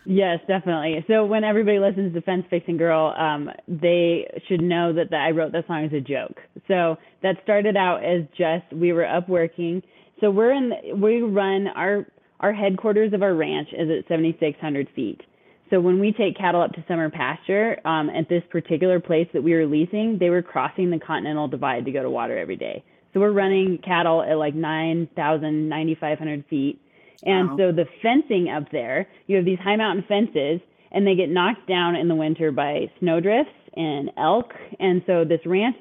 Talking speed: 195 wpm